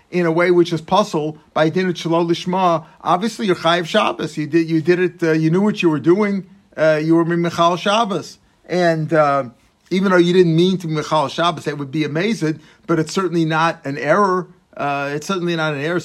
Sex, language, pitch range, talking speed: male, English, 150-175 Hz, 205 wpm